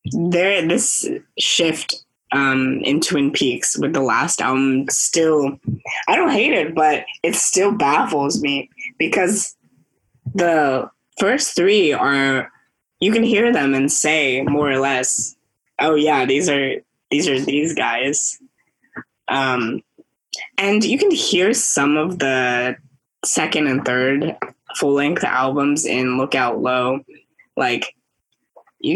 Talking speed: 120 wpm